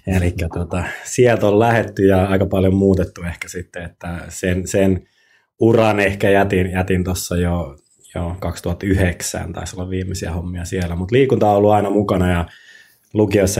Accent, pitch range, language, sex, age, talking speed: native, 85-100 Hz, Finnish, male, 20-39, 150 wpm